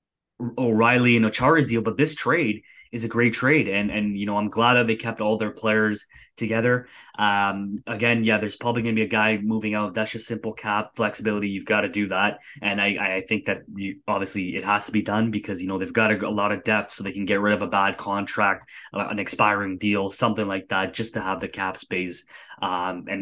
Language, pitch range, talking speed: English, 105-115 Hz, 235 wpm